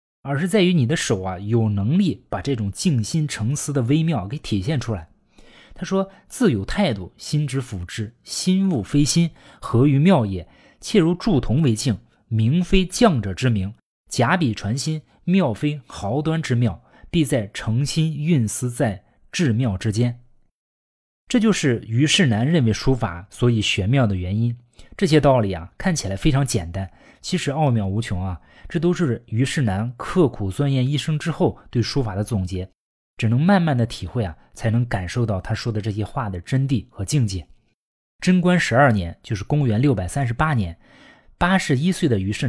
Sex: male